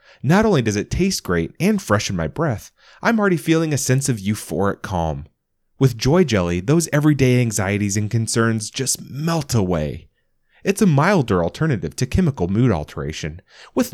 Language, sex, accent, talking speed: English, male, American, 165 wpm